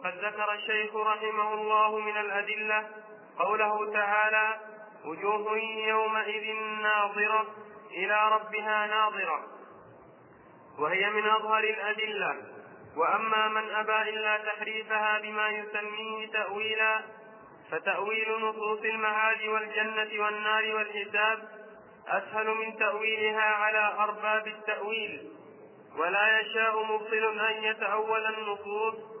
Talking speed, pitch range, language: 90 wpm, 215-220 Hz, Arabic